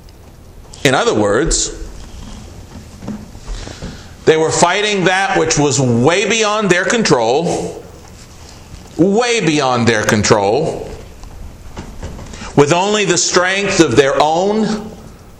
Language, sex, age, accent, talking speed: English, male, 50-69, American, 95 wpm